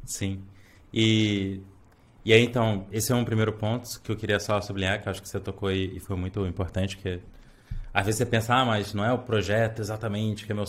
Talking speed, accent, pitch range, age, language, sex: 230 wpm, Brazilian, 100-120 Hz, 20-39, Portuguese, male